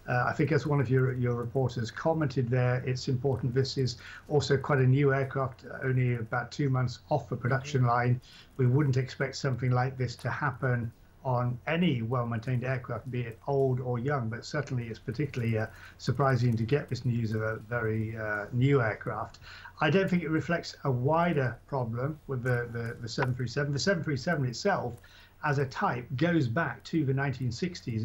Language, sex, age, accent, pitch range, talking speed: English, male, 50-69, British, 120-140 Hz, 180 wpm